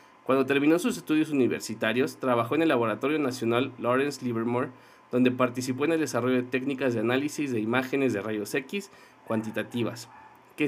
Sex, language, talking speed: male, Spanish, 155 wpm